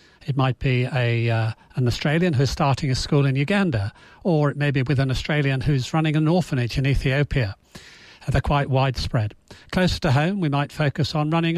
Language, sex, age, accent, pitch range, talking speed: English, male, 40-59, British, 130-155 Hz, 185 wpm